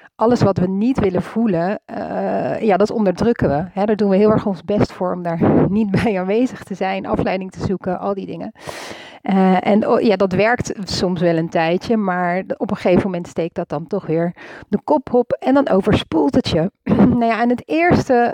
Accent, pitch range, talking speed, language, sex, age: Dutch, 175-220 Hz, 215 wpm, Dutch, female, 40-59